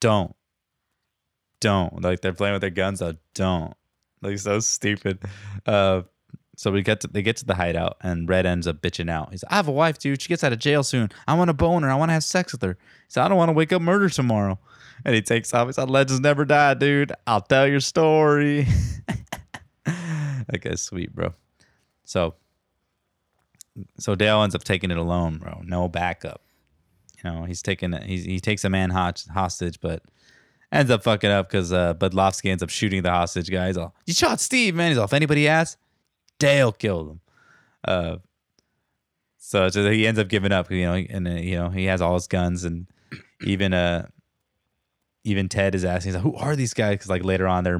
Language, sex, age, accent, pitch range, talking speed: English, male, 20-39, American, 90-130 Hz, 205 wpm